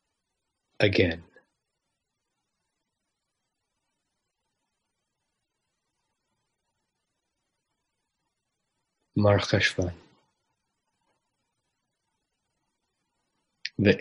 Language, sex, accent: English, male, American